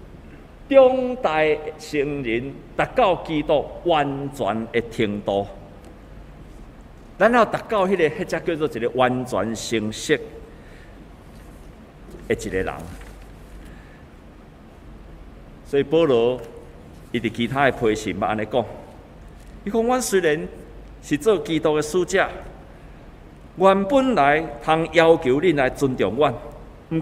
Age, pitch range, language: 50-69, 115-185 Hz, Chinese